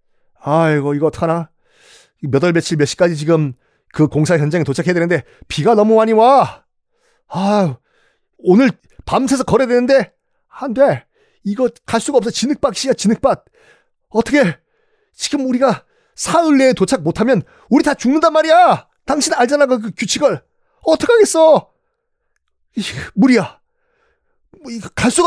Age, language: 40-59, Korean